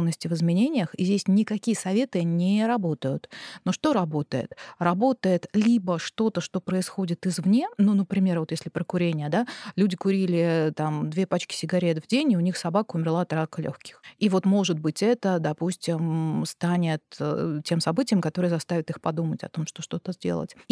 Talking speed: 170 wpm